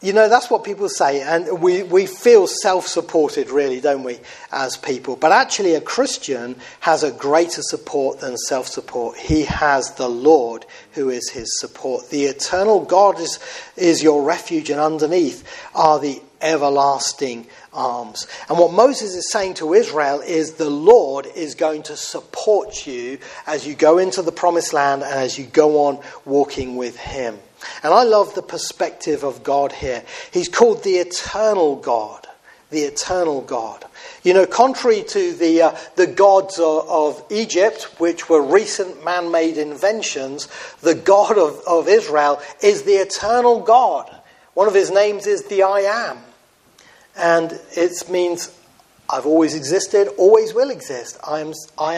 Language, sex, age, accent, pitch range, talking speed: English, male, 40-59, British, 150-205 Hz, 160 wpm